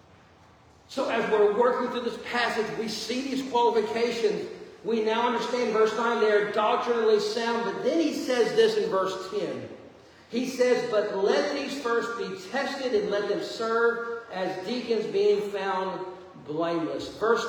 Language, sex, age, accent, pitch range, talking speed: English, male, 40-59, American, 205-335 Hz, 160 wpm